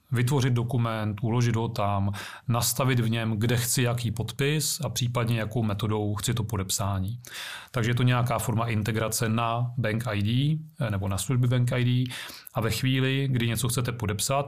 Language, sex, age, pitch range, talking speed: Czech, male, 30-49, 110-125 Hz, 165 wpm